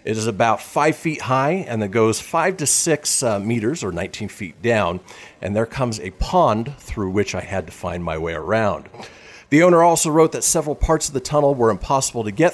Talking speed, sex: 215 wpm, male